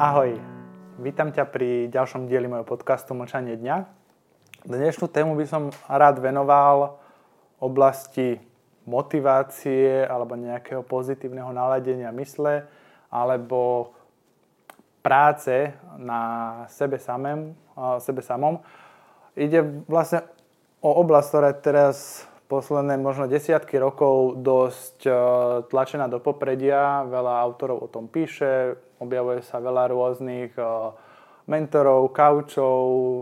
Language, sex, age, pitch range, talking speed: Slovak, male, 20-39, 125-145 Hz, 100 wpm